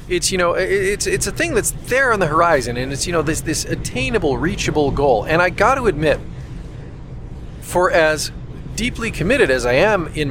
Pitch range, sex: 125-165 Hz, male